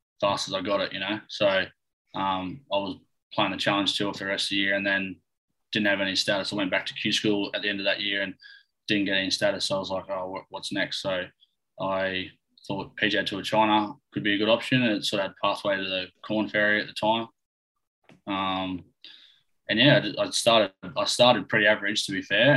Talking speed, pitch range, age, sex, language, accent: 235 wpm, 95-110 Hz, 20-39, male, English, Australian